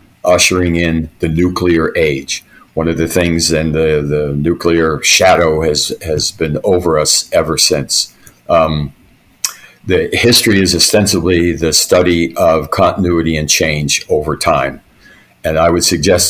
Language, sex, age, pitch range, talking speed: English, male, 50-69, 80-90 Hz, 140 wpm